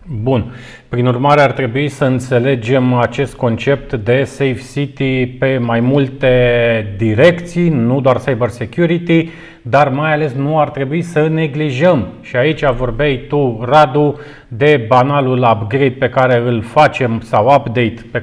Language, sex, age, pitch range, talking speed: Romanian, male, 30-49, 125-150 Hz, 140 wpm